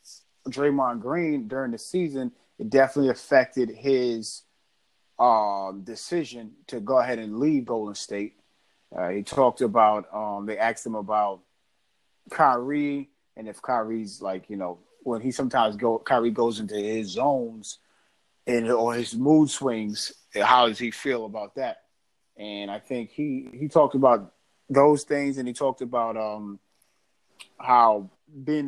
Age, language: 30-49, English